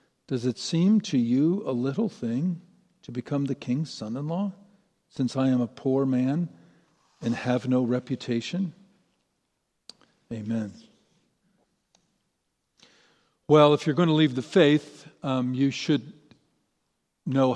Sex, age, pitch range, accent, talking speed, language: male, 50-69, 125-155 Hz, American, 125 wpm, English